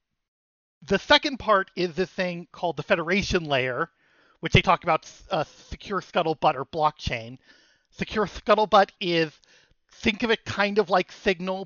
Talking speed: 150 wpm